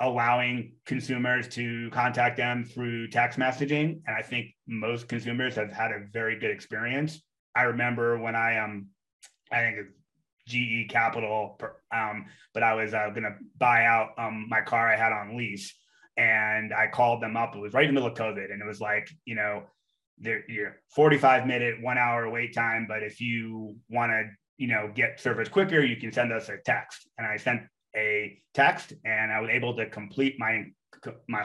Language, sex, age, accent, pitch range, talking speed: English, male, 30-49, American, 110-120 Hz, 195 wpm